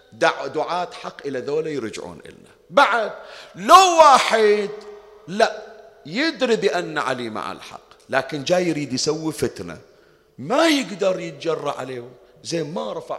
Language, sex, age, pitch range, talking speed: Arabic, male, 50-69, 130-220 Hz, 125 wpm